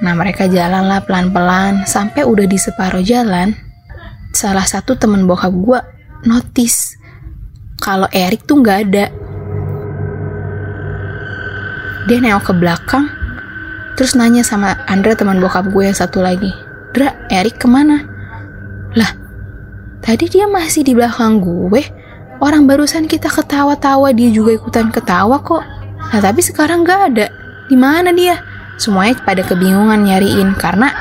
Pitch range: 185-240 Hz